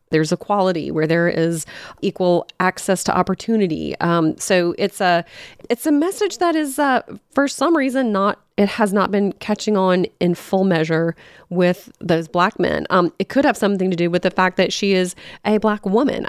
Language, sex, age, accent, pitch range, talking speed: English, female, 30-49, American, 170-200 Hz, 190 wpm